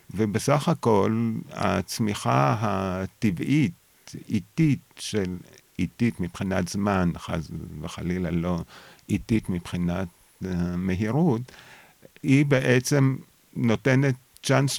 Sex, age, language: male, 50-69, Hebrew